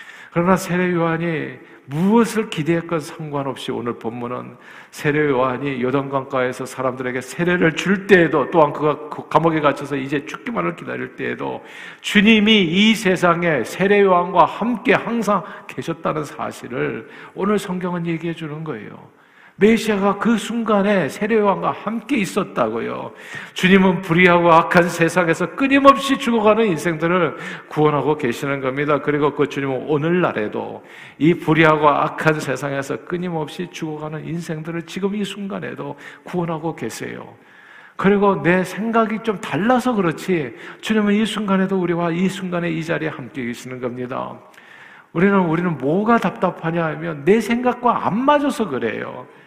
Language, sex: Korean, male